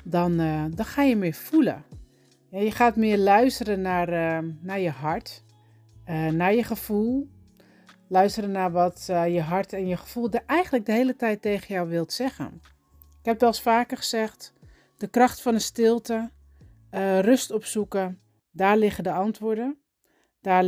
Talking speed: 165 wpm